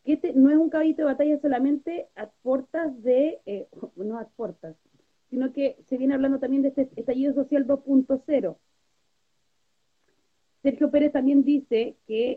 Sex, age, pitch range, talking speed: female, 30-49, 230-295 Hz, 155 wpm